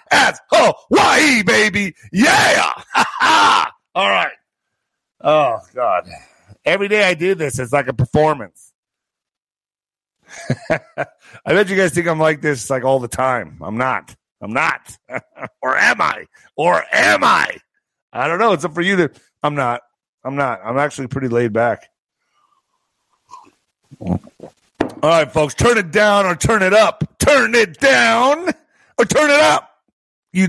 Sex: male